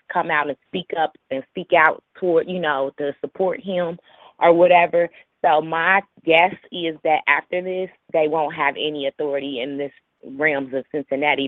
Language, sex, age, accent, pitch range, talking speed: English, female, 20-39, American, 145-170 Hz, 170 wpm